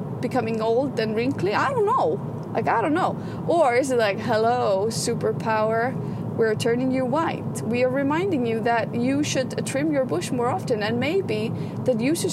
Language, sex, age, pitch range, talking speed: English, female, 30-49, 215-255 Hz, 185 wpm